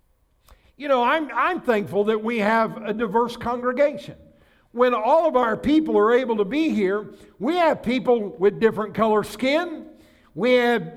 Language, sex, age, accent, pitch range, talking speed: English, male, 60-79, American, 220-300 Hz, 165 wpm